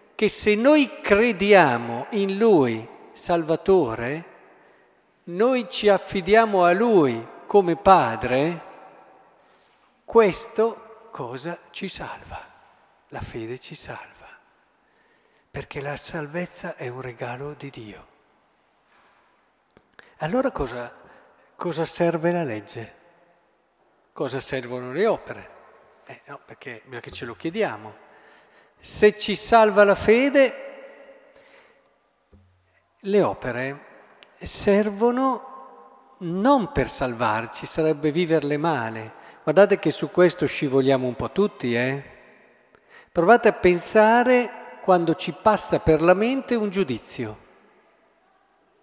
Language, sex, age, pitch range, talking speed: Italian, male, 50-69, 135-225 Hz, 100 wpm